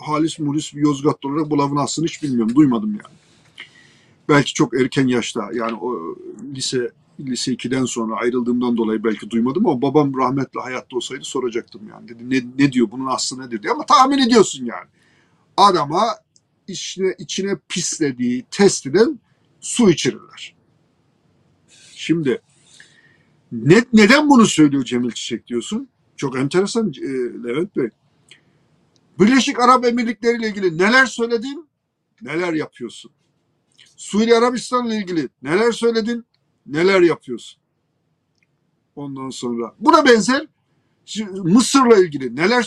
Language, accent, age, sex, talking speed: Turkish, native, 50-69, male, 120 wpm